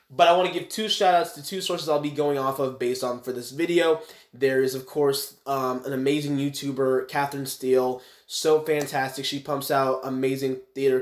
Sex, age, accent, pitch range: male, 20-39, American, 125-145 Hz